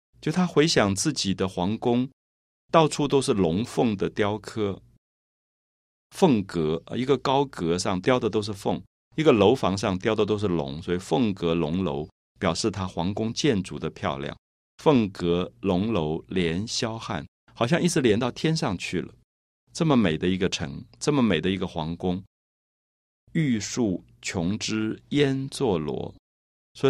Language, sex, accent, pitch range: Chinese, male, native, 85-135 Hz